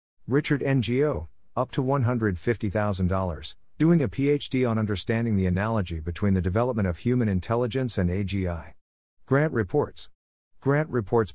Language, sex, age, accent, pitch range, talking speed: English, male, 50-69, American, 90-115 Hz, 125 wpm